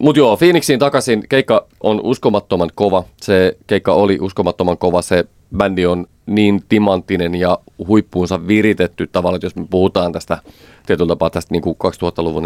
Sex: male